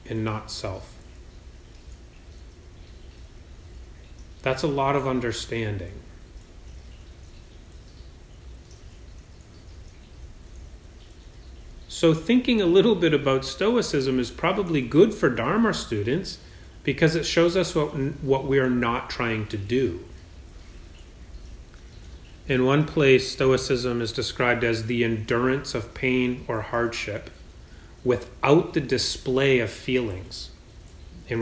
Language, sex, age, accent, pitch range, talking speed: English, male, 30-49, American, 85-130 Hz, 100 wpm